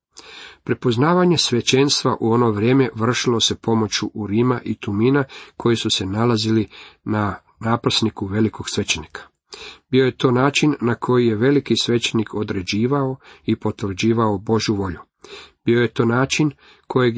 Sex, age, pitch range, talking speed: male, 40-59, 105-125 Hz, 135 wpm